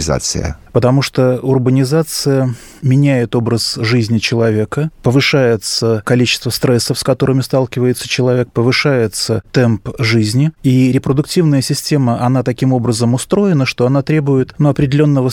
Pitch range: 120-140 Hz